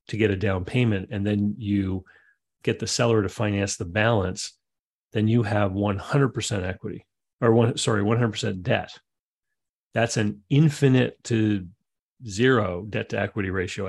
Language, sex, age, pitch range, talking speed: English, male, 40-59, 100-115 Hz, 145 wpm